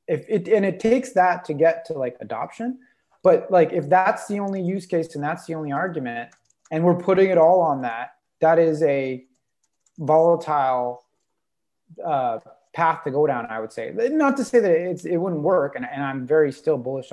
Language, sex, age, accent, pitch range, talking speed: English, male, 20-39, American, 135-175 Hz, 200 wpm